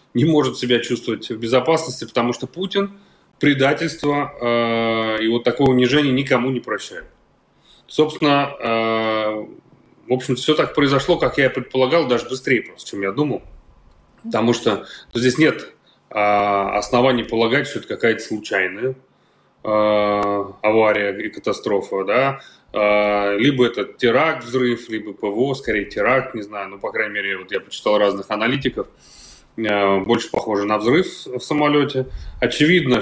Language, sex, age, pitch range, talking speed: Russian, male, 30-49, 105-130 Hz, 140 wpm